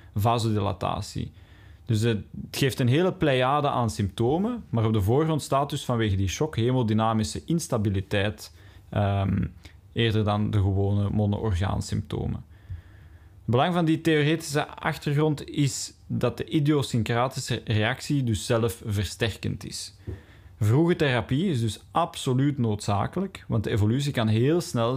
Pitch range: 105-140 Hz